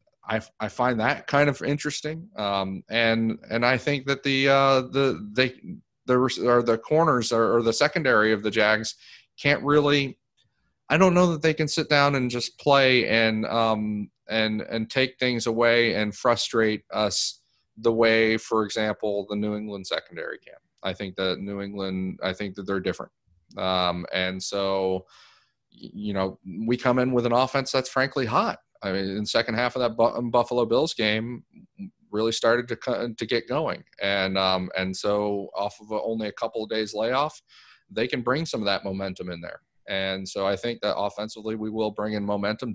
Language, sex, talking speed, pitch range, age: English, male, 190 wpm, 105-125 Hz, 30-49